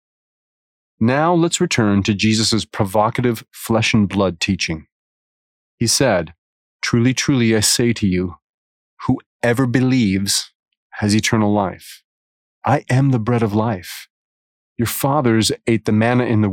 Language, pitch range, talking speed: English, 100-125 Hz, 125 wpm